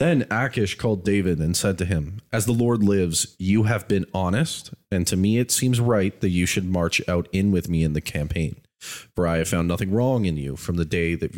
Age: 30-49